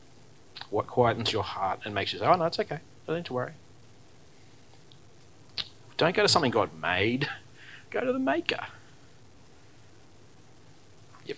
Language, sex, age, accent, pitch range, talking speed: English, male, 30-49, Australian, 115-145 Hz, 135 wpm